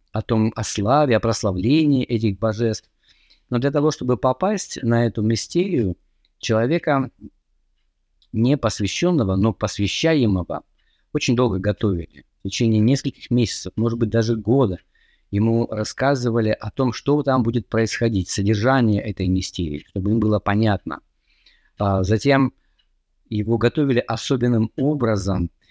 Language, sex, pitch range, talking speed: Russian, male, 100-125 Hz, 120 wpm